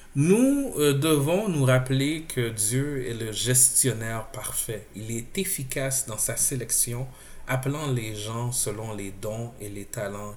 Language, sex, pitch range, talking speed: French, male, 115-145 Hz, 150 wpm